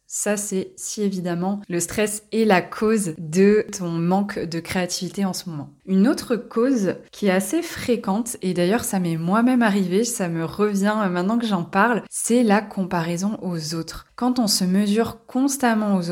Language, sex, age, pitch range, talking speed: French, female, 20-39, 185-220 Hz, 180 wpm